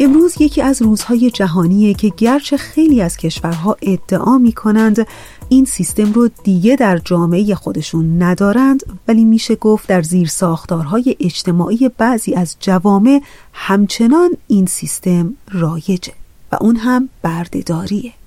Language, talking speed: Persian, 125 wpm